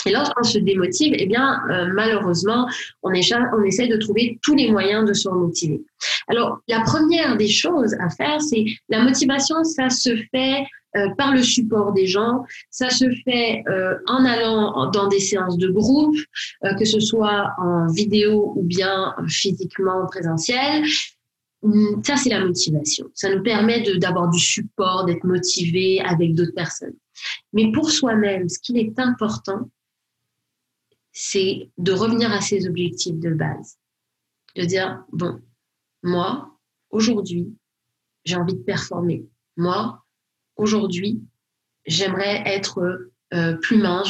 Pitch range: 180-230 Hz